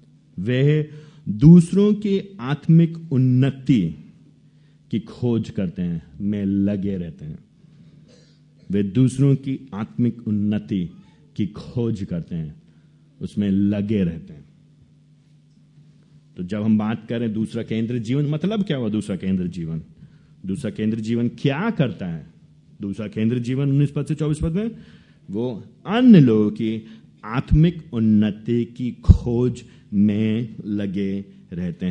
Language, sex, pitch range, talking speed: Hindi, male, 100-150 Hz, 120 wpm